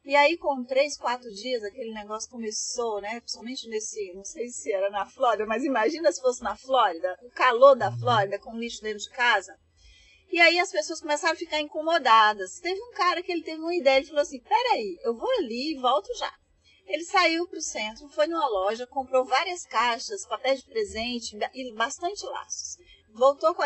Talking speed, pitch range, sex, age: 200 wpm, 235-330 Hz, female, 40-59